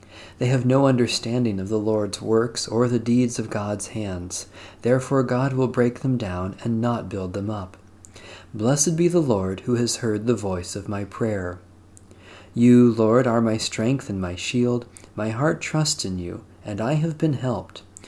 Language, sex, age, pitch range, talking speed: English, male, 40-59, 95-125 Hz, 185 wpm